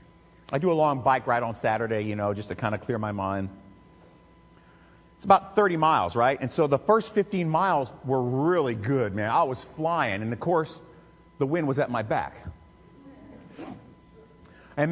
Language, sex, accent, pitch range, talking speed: English, male, American, 105-170 Hz, 180 wpm